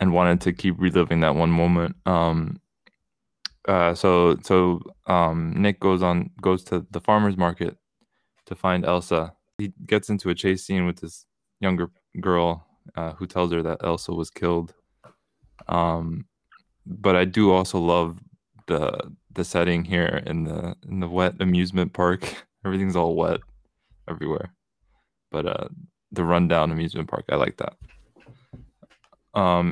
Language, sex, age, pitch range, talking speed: English, male, 20-39, 85-95 Hz, 145 wpm